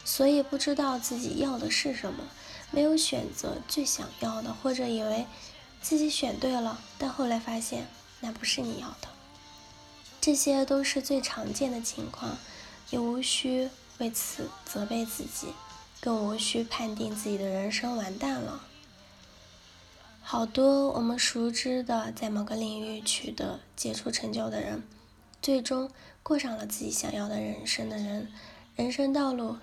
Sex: female